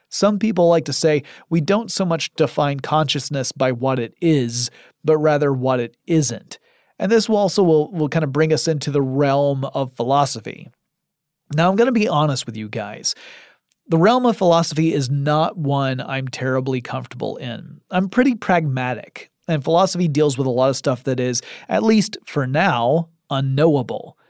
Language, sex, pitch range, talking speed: English, male, 135-170 Hz, 180 wpm